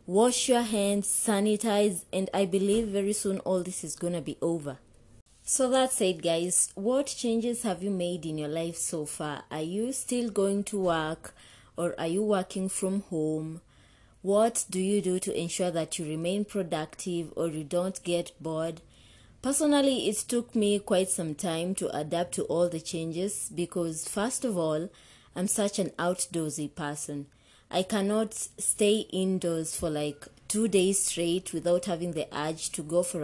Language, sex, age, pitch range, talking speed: English, female, 20-39, 165-210 Hz, 170 wpm